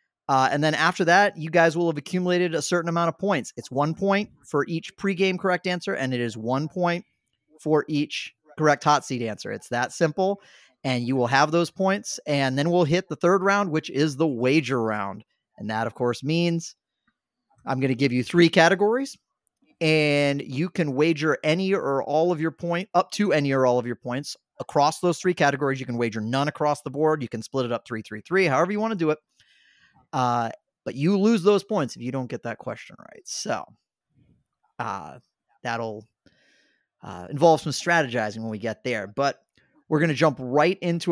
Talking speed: 205 wpm